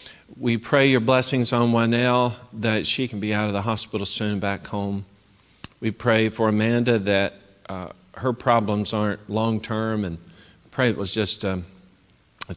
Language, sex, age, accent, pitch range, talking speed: English, male, 50-69, American, 100-115 Hz, 160 wpm